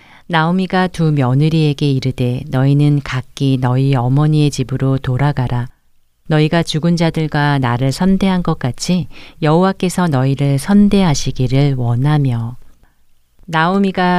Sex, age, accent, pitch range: female, 40-59, native, 125-165 Hz